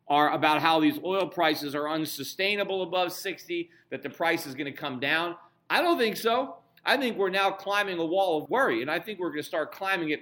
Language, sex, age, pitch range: English, male, 40-59, 150-230 Hz